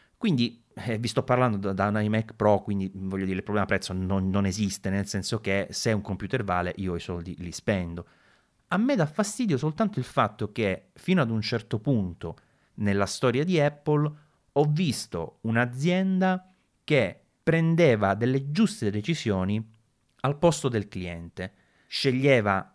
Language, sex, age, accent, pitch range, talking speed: Italian, male, 30-49, native, 95-140 Hz, 160 wpm